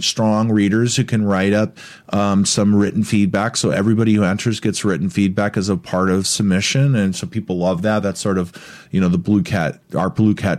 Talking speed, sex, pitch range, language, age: 215 wpm, male, 90-110 Hz, English, 30-49